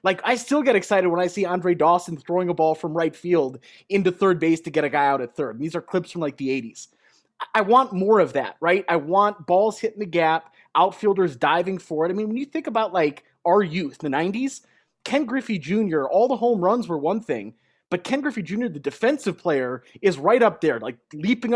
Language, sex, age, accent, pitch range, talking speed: English, male, 20-39, American, 160-215 Hz, 235 wpm